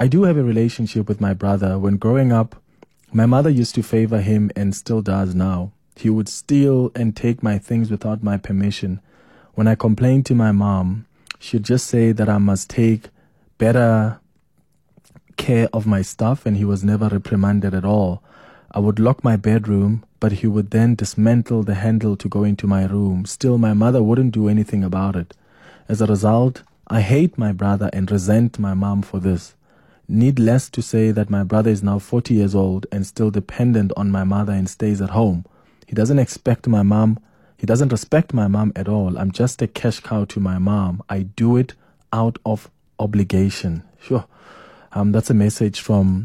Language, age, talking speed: English, 20-39, 190 wpm